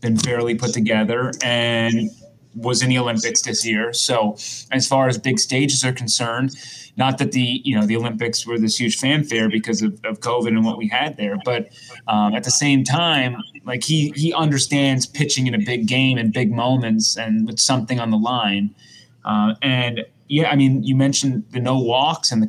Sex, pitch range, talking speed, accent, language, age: male, 110-135 Hz, 200 wpm, American, English, 20-39